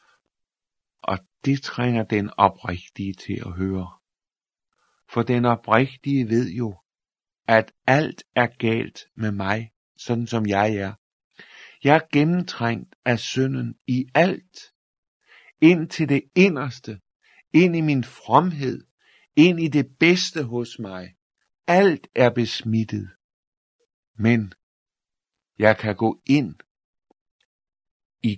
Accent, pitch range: native, 100-130 Hz